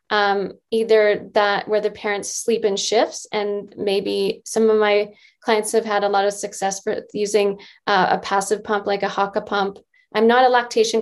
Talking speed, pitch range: 190 wpm, 195-215 Hz